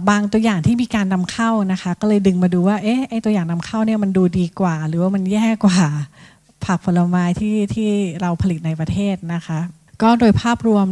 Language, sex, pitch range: Thai, female, 165-205 Hz